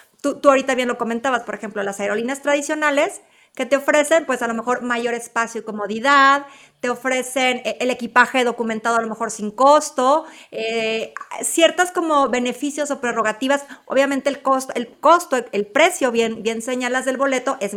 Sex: female